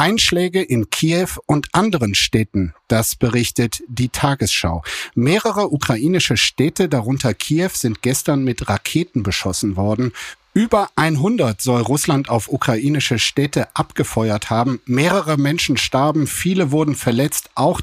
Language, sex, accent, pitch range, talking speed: German, male, German, 120-150 Hz, 125 wpm